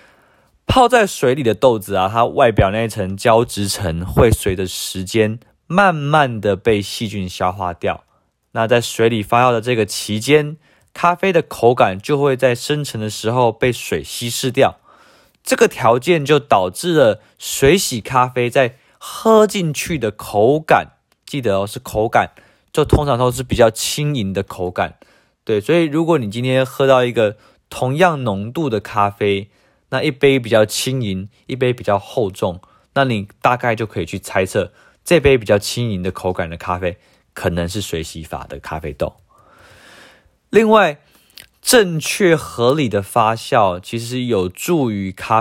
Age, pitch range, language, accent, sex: 20-39, 95-130 Hz, Chinese, native, male